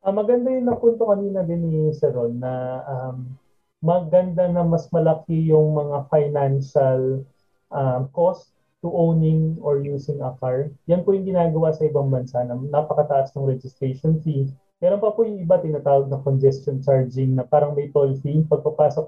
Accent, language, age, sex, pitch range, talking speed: native, Filipino, 20-39, male, 140-180 Hz, 165 wpm